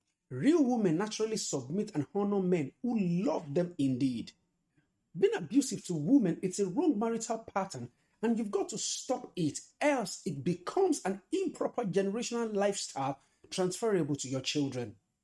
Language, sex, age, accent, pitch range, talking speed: English, male, 50-69, Nigerian, 140-205 Hz, 145 wpm